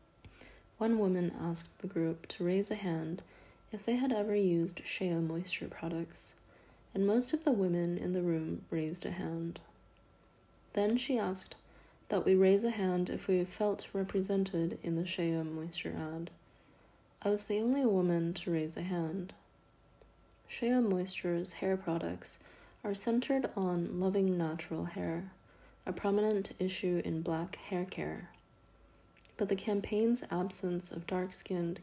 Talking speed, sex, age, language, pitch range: 145 wpm, female, 20-39, English, 170-205 Hz